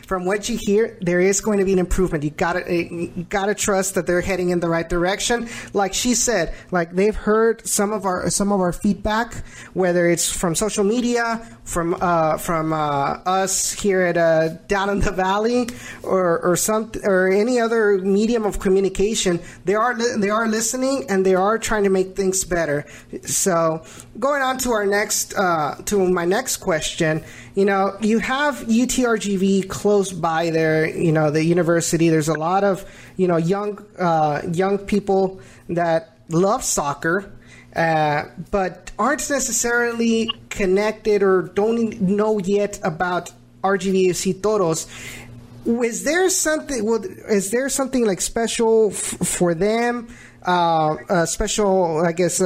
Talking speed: 165 wpm